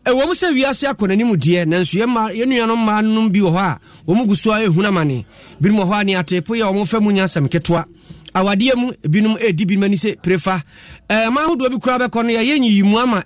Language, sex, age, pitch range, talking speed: English, male, 30-49, 175-230 Hz, 195 wpm